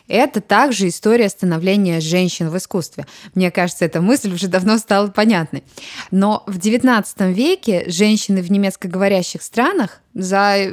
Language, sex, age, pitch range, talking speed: Russian, female, 20-39, 185-245 Hz, 135 wpm